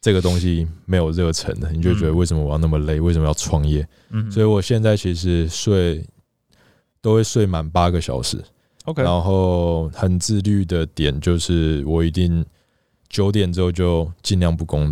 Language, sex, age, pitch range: Chinese, male, 20-39, 80-95 Hz